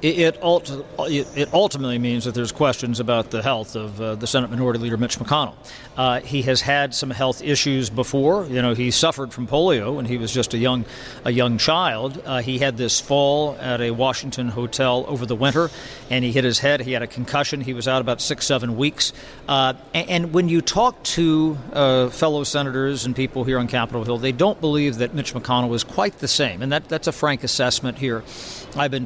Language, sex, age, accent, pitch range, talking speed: English, male, 50-69, American, 125-145 Hz, 215 wpm